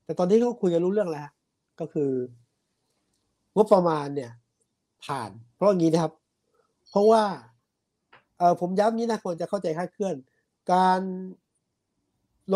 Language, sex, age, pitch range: Thai, male, 60-79, 140-205 Hz